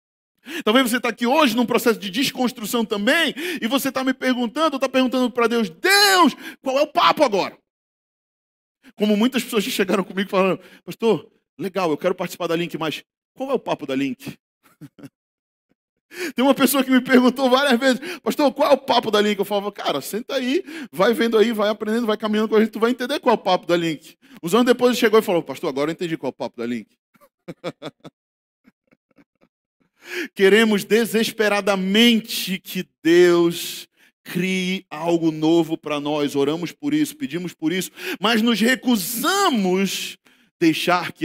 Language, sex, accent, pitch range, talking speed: Portuguese, male, Brazilian, 160-250 Hz, 180 wpm